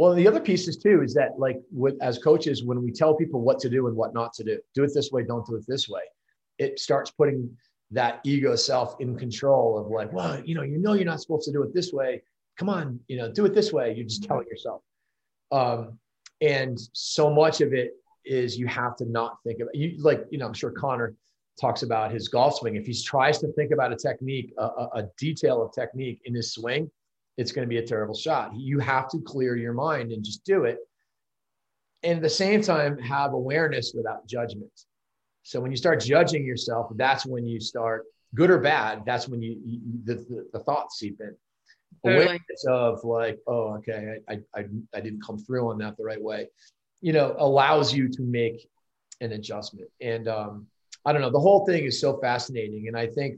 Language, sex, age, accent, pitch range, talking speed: English, male, 30-49, American, 115-150 Hz, 220 wpm